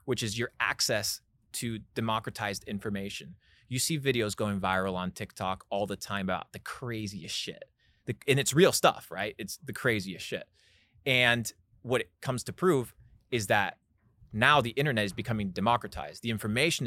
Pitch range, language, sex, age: 105-130 Hz, English, male, 20-39